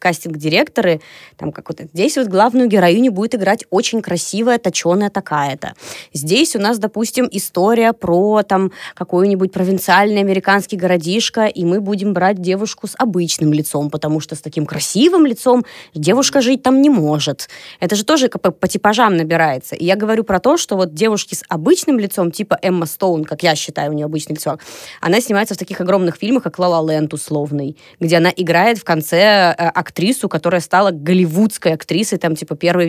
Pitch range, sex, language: 165-210 Hz, female, Russian